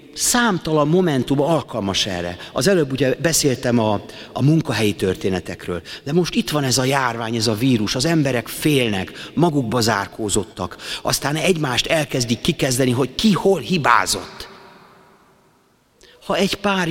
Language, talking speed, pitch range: Hungarian, 135 wpm, 130-175 Hz